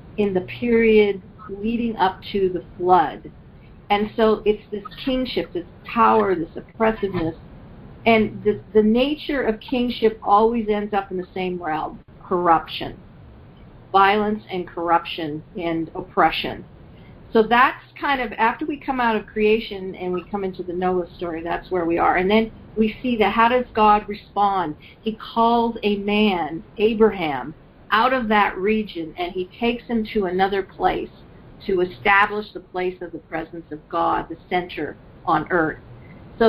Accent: American